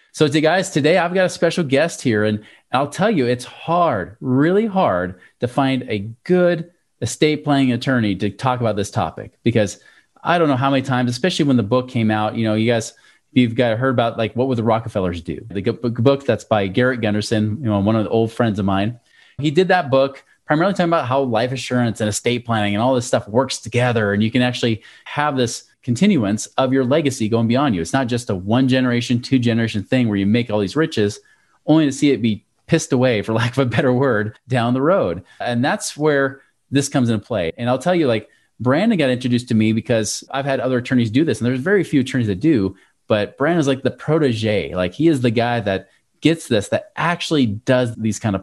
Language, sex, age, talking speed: English, male, 30-49, 230 wpm